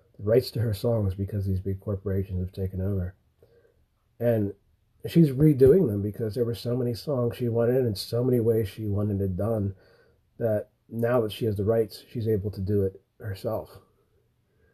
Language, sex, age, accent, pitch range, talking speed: English, male, 30-49, American, 100-125 Hz, 180 wpm